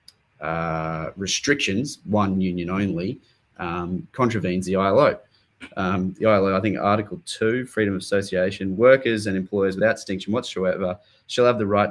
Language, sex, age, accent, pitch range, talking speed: English, male, 20-39, Australian, 90-105 Hz, 145 wpm